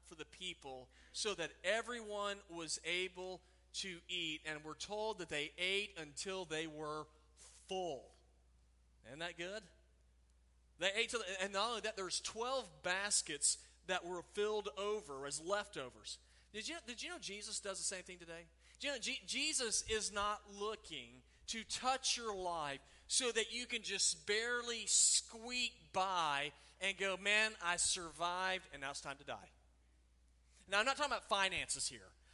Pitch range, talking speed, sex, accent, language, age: 150-215 Hz, 165 wpm, male, American, English, 30-49